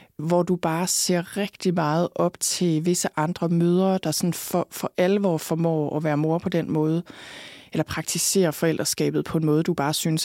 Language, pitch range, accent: Danish, 160-185 Hz, native